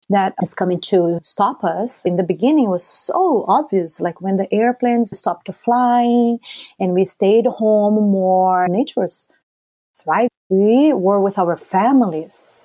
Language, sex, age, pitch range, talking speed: English, female, 40-59, 190-245 Hz, 150 wpm